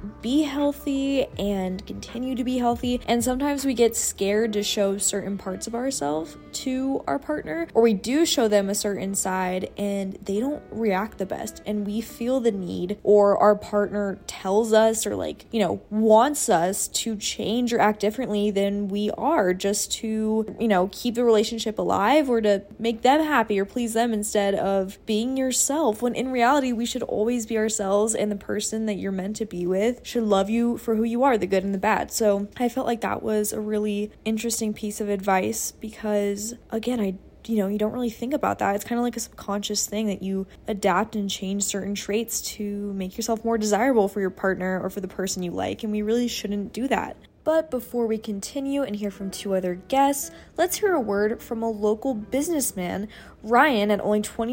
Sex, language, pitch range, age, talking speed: female, English, 200-240 Hz, 20-39, 205 wpm